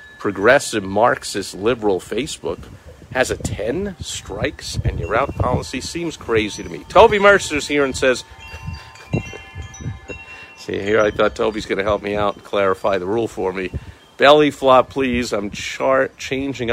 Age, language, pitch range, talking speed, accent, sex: 50-69, English, 95-120 Hz, 155 wpm, American, male